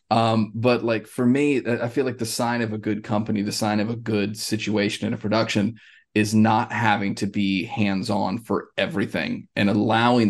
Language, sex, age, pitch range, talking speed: English, male, 20-39, 105-120 Hz, 200 wpm